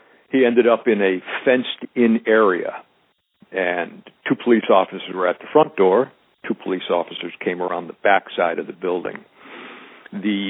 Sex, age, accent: male, 60-79, American